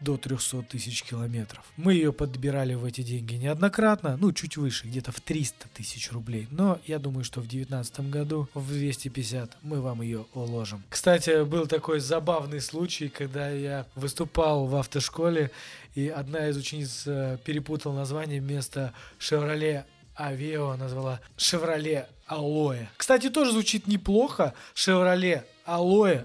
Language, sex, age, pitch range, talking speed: Russian, male, 20-39, 130-165 Hz, 135 wpm